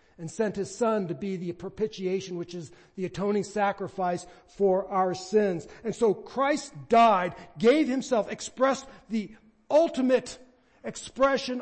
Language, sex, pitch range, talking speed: English, male, 170-235 Hz, 135 wpm